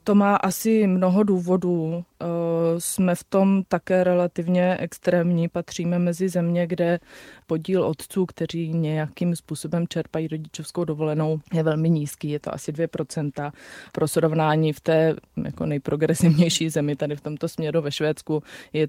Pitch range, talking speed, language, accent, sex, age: 155-175 Hz, 140 wpm, Czech, native, female, 20-39